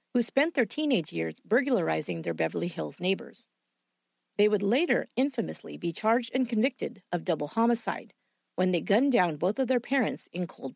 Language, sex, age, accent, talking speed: English, female, 50-69, American, 175 wpm